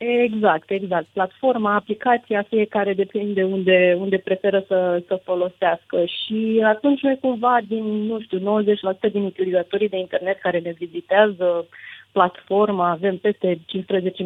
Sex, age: female, 20-39